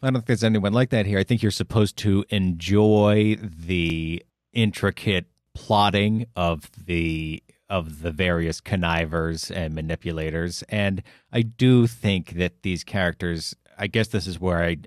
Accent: American